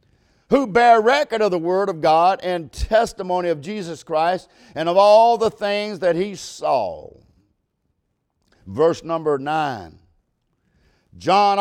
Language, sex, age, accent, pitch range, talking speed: English, male, 50-69, American, 170-230 Hz, 130 wpm